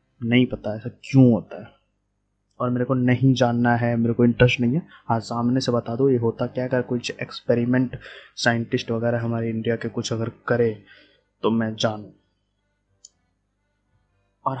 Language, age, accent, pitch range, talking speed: Hindi, 20-39, native, 110-130 Hz, 165 wpm